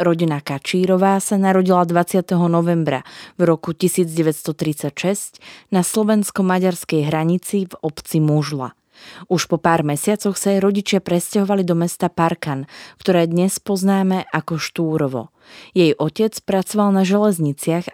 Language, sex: Slovak, female